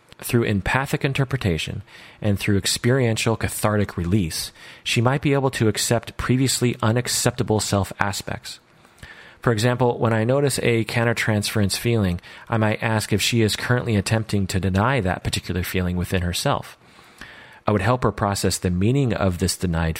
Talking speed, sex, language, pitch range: 155 wpm, male, English, 90-115 Hz